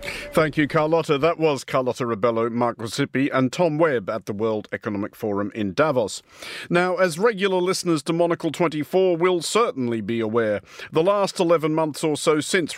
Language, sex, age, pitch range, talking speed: English, male, 50-69, 130-180 Hz, 170 wpm